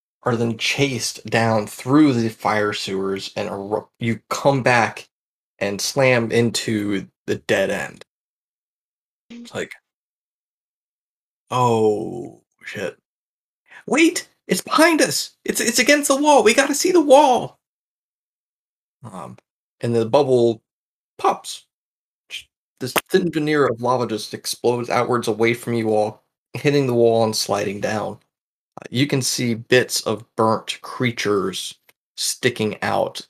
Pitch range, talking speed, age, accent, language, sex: 110-140 Hz, 125 wpm, 30-49, American, English, male